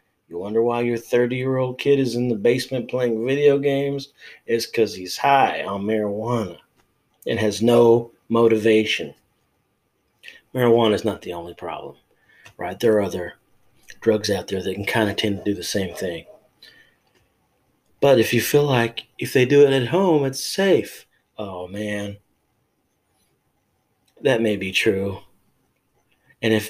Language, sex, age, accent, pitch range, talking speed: English, male, 40-59, American, 105-125 Hz, 150 wpm